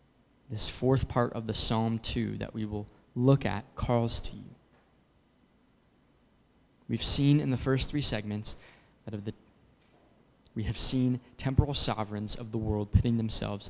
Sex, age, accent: male, 20-39, American